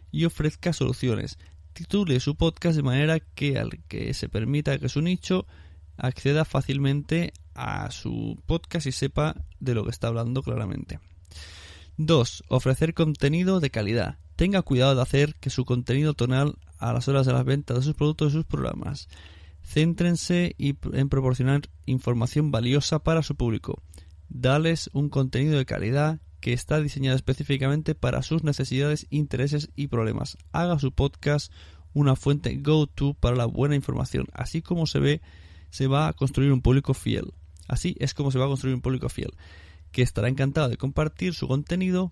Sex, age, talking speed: male, 20-39, 165 wpm